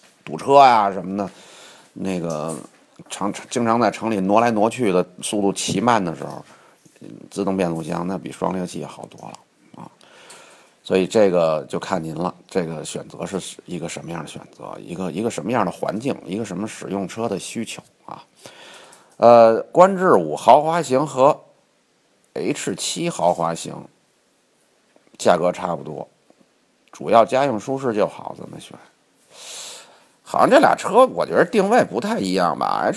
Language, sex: Chinese, male